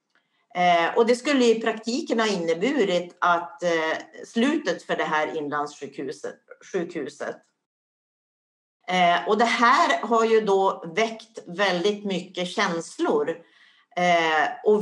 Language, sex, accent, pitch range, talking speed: Swedish, female, native, 175-230 Hz, 115 wpm